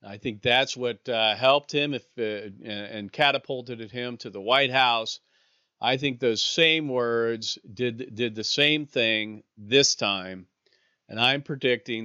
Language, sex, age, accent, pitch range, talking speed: English, male, 40-59, American, 115-150 Hz, 155 wpm